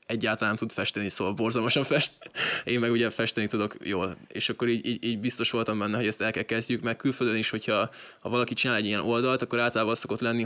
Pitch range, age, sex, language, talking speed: 105-120 Hz, 20-39, male, Hungarian, 225 wpm